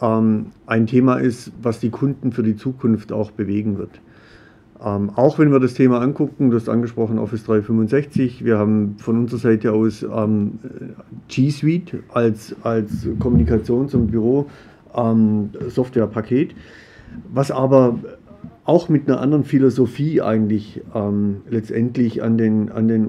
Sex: male